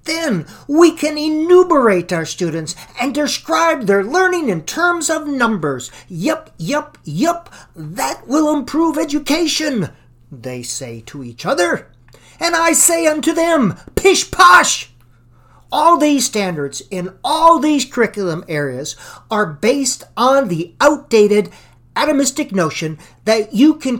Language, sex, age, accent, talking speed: English, male, 50-69, American, 130 wpm